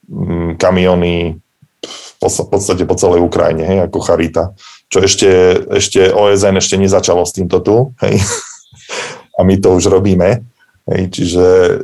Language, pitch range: Slovak, 85-95 Hz